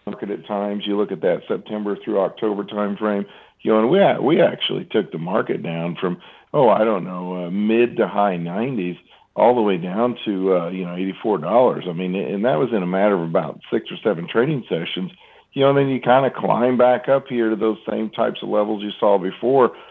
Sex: male